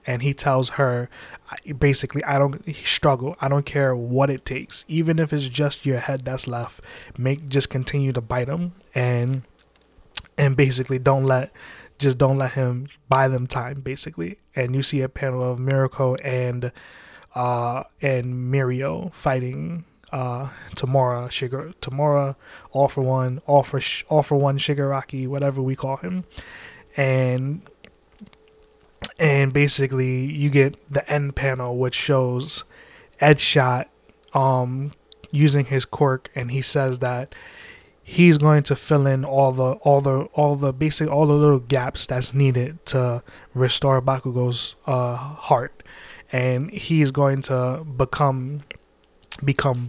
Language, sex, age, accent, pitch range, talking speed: English, male, 20-39, American, 130-145 Hz, 140 wpm